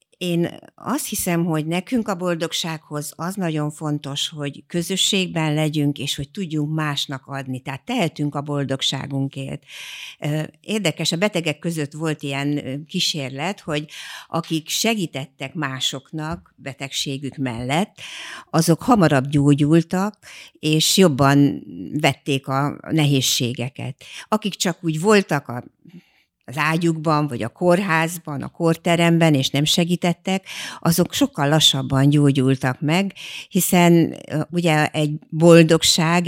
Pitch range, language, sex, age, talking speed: 140-170 Hz, Hungarian, female, 60-79, 110 wpm